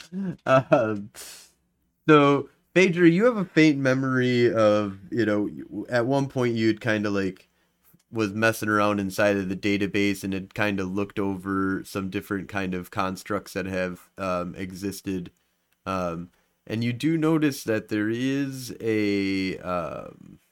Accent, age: American, 30-49